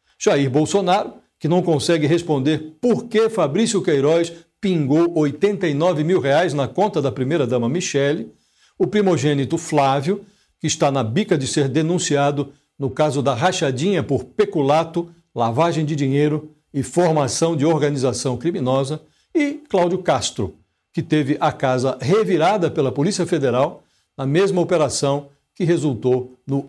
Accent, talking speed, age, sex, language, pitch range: Brazilian, 135 wpm, 60-79, male, Portuguese, 140-175 Hz